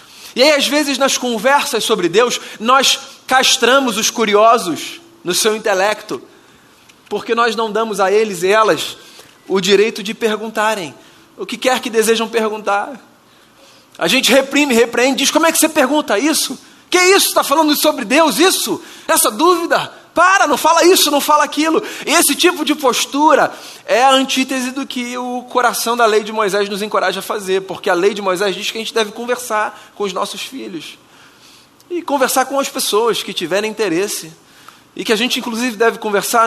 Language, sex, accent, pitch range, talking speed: Portuguese, male, Brazilian, 210-275 Hz, 180 wpm